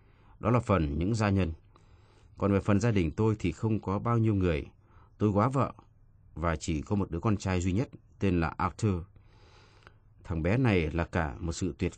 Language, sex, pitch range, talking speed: Vietnamese, male, 90-110 Hz, 205 wpm